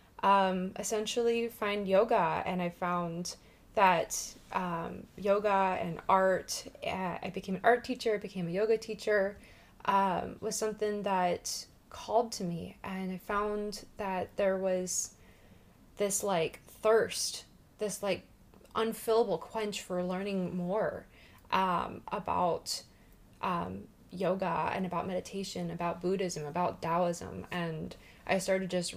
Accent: American